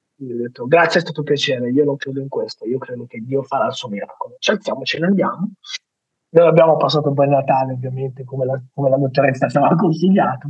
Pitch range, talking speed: 135-185 Hz, 215 wpm